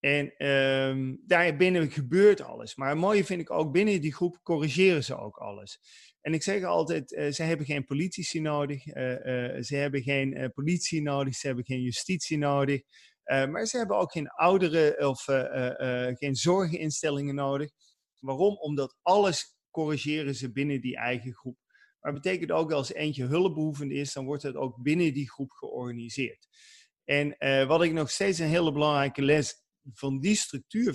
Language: Dutch